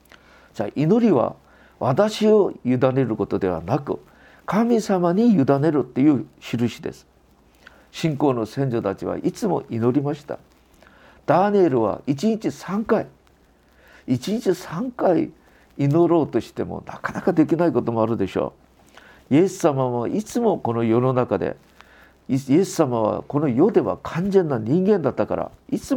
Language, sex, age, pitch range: Japanese, male, 50-69, 115-190 Hz